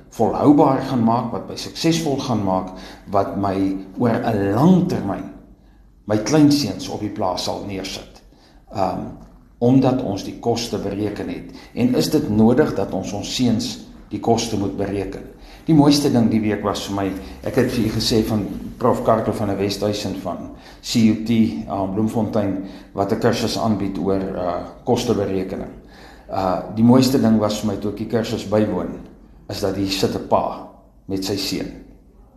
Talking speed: 165 wpm